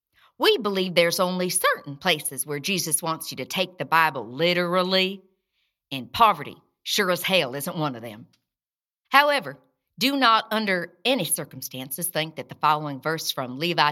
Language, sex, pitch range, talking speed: English, female, 150-195 Hz, 160 wpm